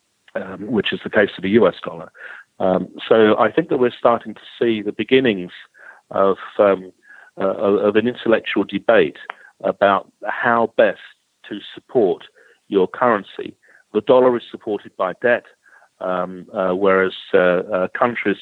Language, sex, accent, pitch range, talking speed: English, male, British, 95-120 Hz, 145 wpm